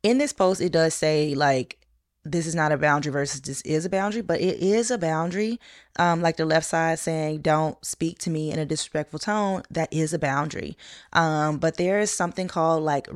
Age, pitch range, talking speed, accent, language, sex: 20-39, 150-180 Hz, 215 wpm, American, English, female